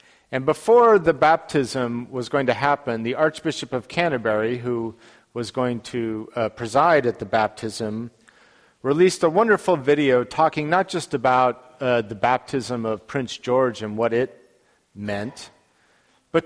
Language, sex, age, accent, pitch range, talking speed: English, male, 50-69, American, 120-160 Hz, 145 wpm